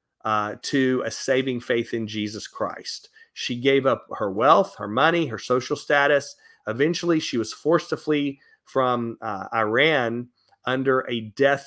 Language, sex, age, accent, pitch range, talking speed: English, male, 40-59, American, 115-145 Hz, 155 wpm